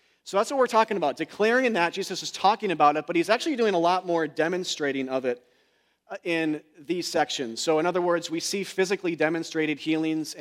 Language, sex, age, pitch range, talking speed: English, male, 40-59, 150-185 Hz, 200 wpm